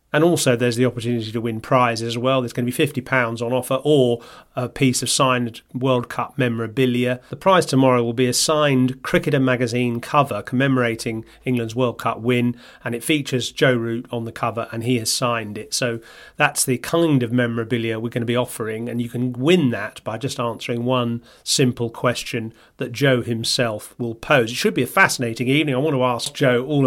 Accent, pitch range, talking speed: British, 120-130 Hz, 205 wpm